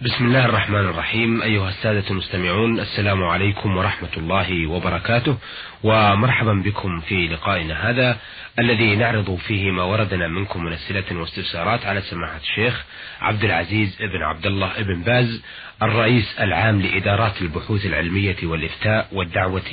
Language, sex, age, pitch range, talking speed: Arabic, male, 30-49, 95-115 Hz, 130 wpm